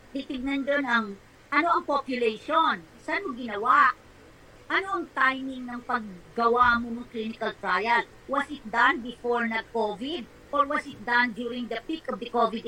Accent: native